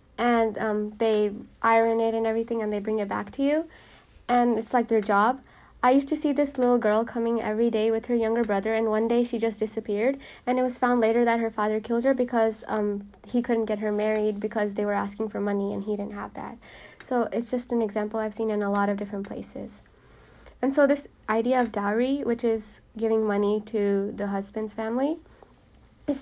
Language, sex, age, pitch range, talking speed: English, female, 20-39, 210-245 Hz, 215 wpm